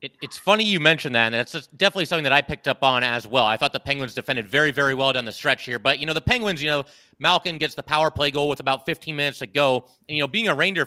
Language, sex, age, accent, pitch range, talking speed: English, male, 30-49, American, 135-170 Hz, 305 wpm